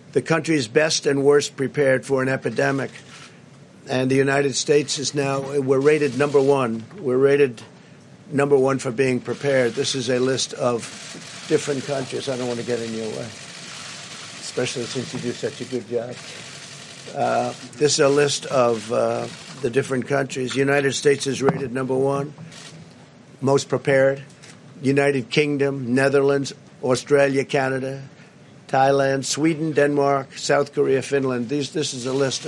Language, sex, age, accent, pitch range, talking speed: English, male, 50-69, American, 130-145 Hz, 155 wpm